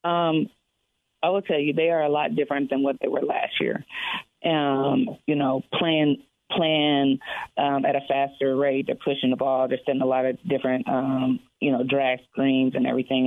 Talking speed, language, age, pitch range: 195 wpm, English, 30-49, 130-145 Hz